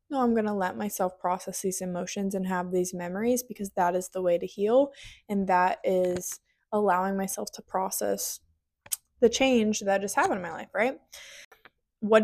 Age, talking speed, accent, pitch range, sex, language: 20-39, 180 wpm, American, 190-225 Hz, female, English